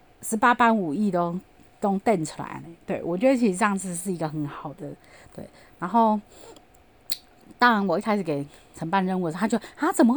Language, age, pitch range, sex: Chinese, 30-49, 175-260 Hz, female